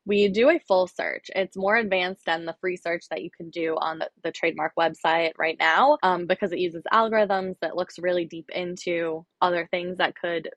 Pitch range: 165-195 Hz